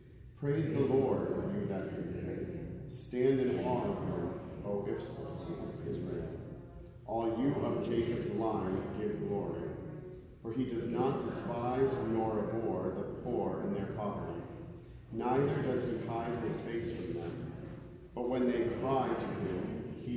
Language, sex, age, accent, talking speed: English, male, 50-69, American, 145 wpm